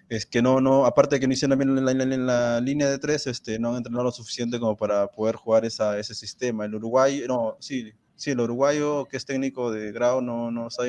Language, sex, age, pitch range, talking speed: Spanish, male, 20-39, 125-175 Hz, 235 wpm